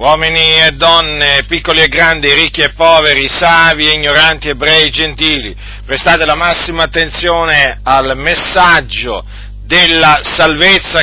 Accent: native